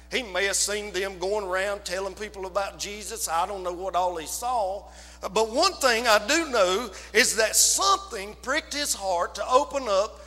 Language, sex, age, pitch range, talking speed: English, male, 50-69, 190-265 Hz, 195 wpm